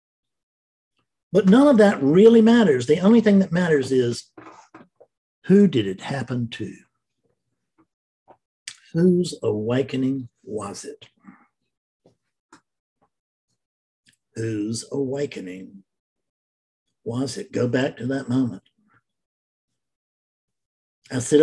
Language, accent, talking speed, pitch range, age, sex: English, American, 90 wpm, 115-170 Hz, 50-69, male